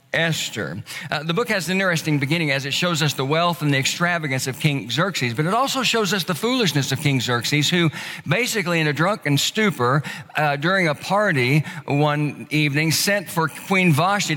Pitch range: 145-180 Hz